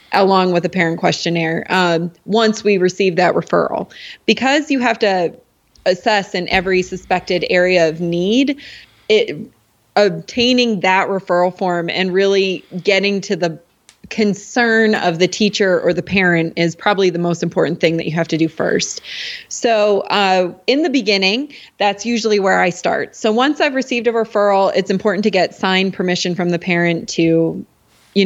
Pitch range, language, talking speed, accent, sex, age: 175-210 Hz, English, 165 wpm, American, female, 20-39